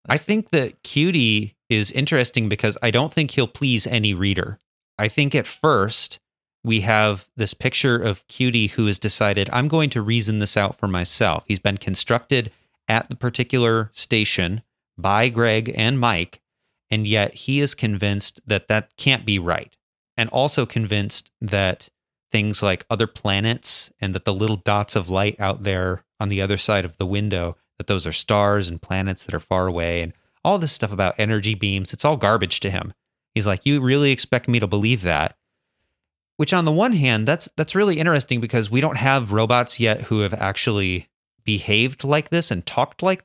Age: 30-49